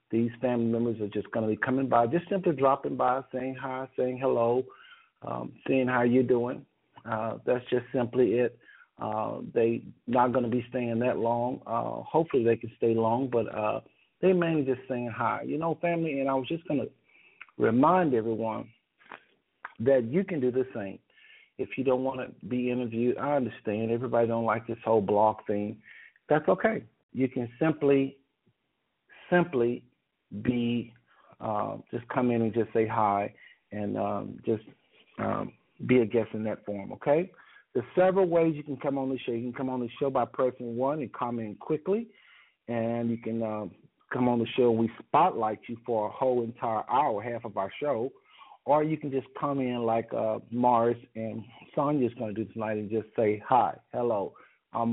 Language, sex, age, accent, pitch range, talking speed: English, male, 50-69, American, 115-130 Hz, 190 wpm